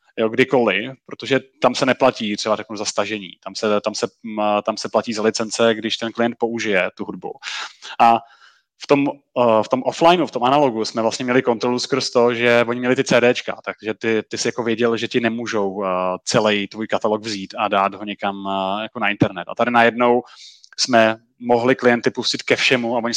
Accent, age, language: native, 20-39, Czech